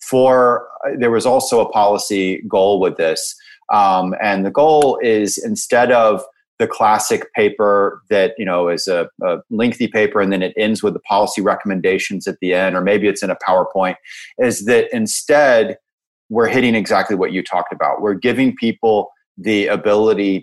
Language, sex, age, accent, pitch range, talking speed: English, male, 30-49, American, 105-140 Hz, 175 wpm